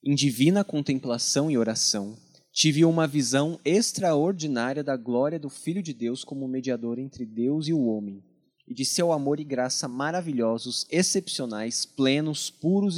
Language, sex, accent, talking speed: Portuguese, male, Brazilian, 150 wpm